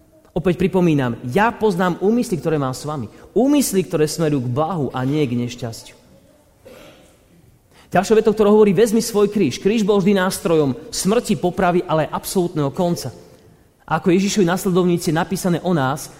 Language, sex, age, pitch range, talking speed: Slovak, male, 40-59, 150-205 Hz, 155 wpm